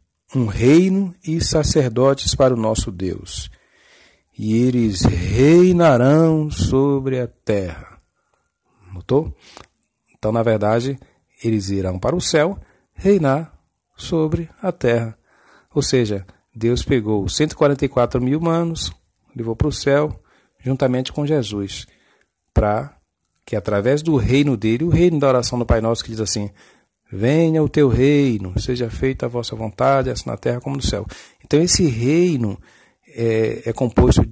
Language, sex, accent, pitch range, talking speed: Portuguese, male, Brazilian, 110-150 Hz, 135 wpm